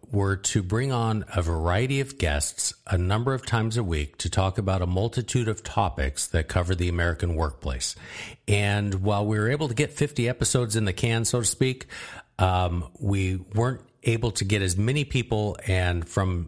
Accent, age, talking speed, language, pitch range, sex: American, 50-69, 190 wpm, English, 85-110 Hz, male